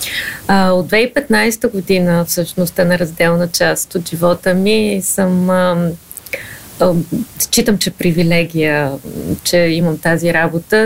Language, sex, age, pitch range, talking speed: Bulgarian, female, 30-49, 175-200 Hz, 120 wpm